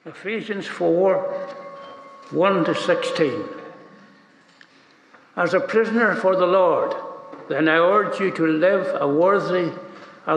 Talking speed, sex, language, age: 100 wpm, male, English, 60-79